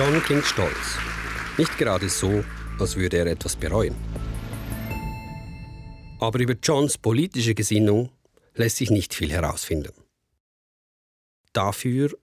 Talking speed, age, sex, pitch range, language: 110 wpm, 50-69, male, 90-120 Hz, German